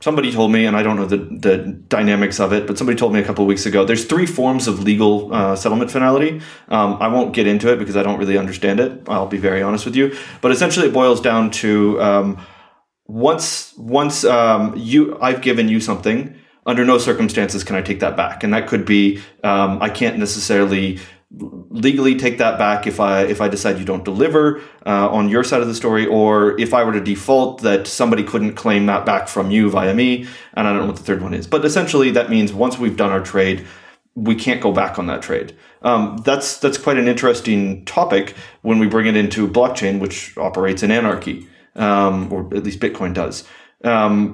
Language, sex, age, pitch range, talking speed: English, male, 30-49, 100-120 Hz, 220 wpm